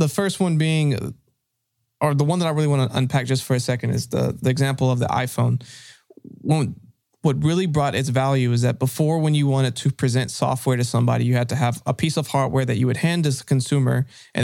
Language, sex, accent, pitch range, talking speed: English, male, American, 125-135 Hz, 235 wpm